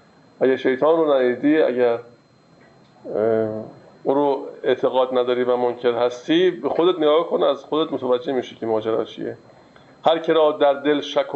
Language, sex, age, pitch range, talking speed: Persian, male, 50-69, 130-160 Hz, 155 wpm